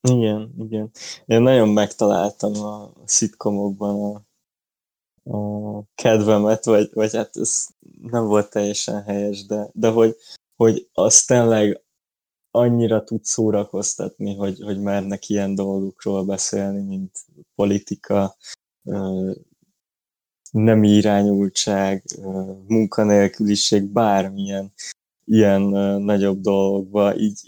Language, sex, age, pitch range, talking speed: Hungarian, male, 20-39, 100-110 Hz, 95 wpm